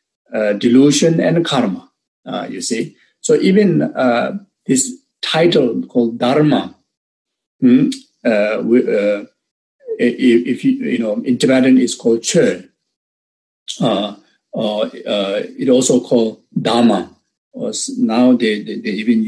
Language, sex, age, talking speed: Indonesian, male, 50-69, 125 wpm